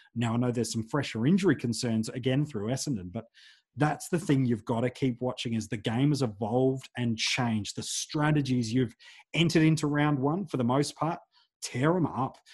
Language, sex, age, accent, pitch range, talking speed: English, male, 30-49, Australian, 115-145 Hz, 195 wpm